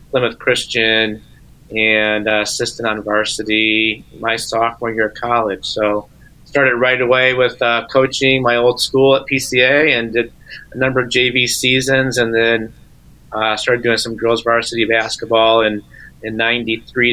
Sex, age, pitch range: male, 30-49, 115-125 Hz